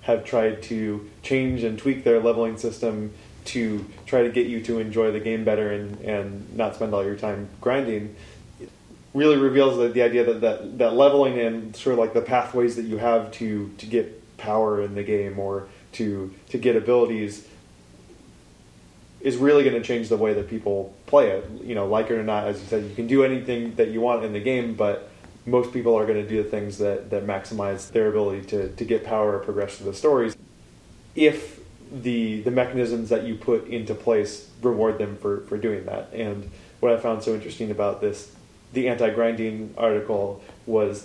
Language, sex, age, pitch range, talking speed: English, male, 20-39, 105-120 Hz, 200 wpm